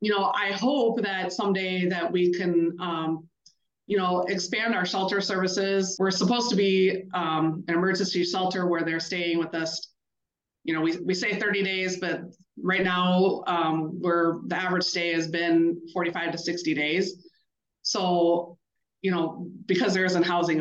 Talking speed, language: 165 wpm, English